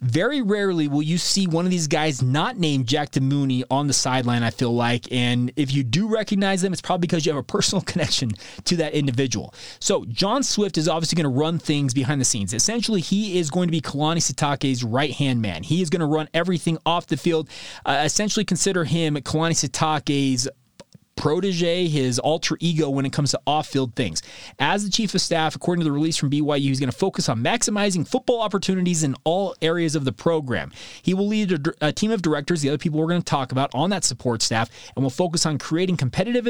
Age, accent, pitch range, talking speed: 30-49, American, 135-175 Hz, 220 wpm